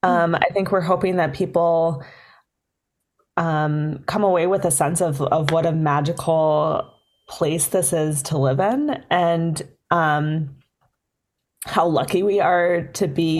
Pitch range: 165-190 Hz